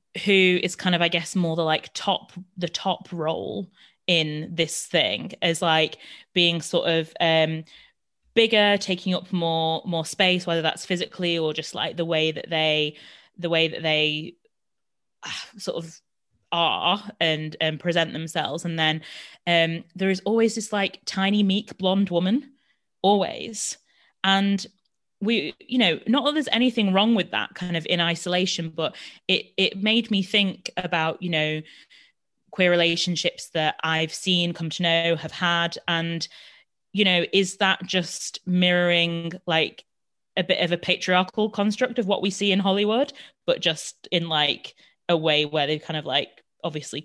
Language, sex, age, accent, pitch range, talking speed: English, female, 20-39, British, 165-200 Hz, 165 wpm